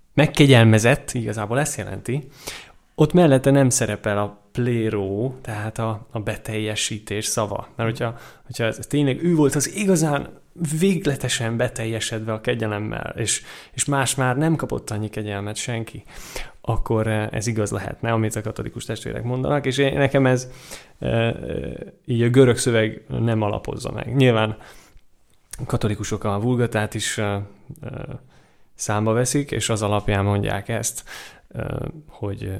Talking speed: 125 wpm